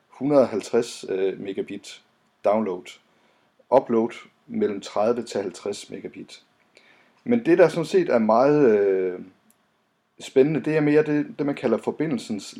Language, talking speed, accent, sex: Danish, 130 wpm, native, male